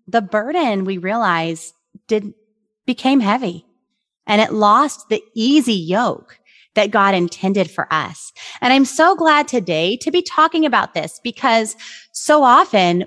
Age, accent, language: 30-49, American, English